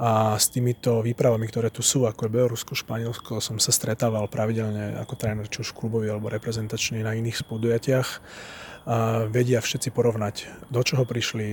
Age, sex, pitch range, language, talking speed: 30-49, male, 110-125 Hz, Slovak, 160 wpm